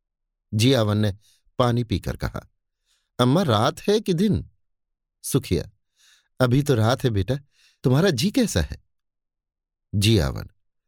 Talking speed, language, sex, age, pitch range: 115 wpm, Hindi, male, 50-69, 95-135 Hz